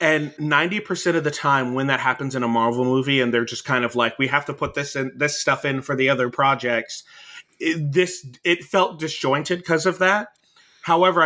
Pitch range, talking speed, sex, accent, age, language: 130-170 Hz, 220 wpm, male, American, 30-49, English